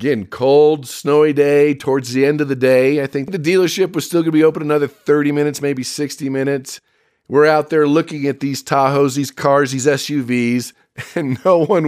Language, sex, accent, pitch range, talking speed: English, male, American, 130-160 Hz, 195 wpm